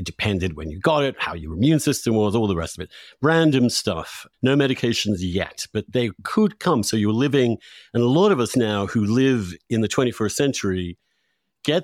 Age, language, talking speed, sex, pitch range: 50-69, English, 210 wpm, male, 100-130 Hz